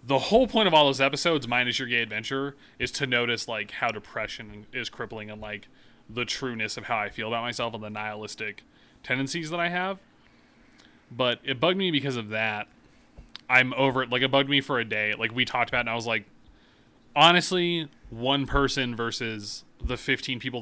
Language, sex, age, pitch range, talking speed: English, male, 30-49, 115-135 Hz, 200 wpm